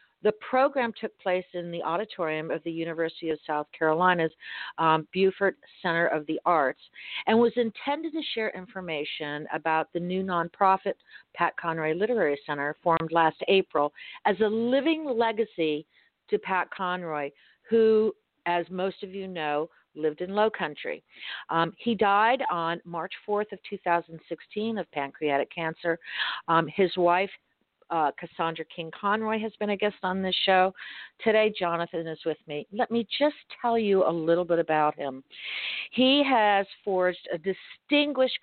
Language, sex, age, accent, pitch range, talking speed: English, female, 50-69, American, 160-205 Hz, 150 wpm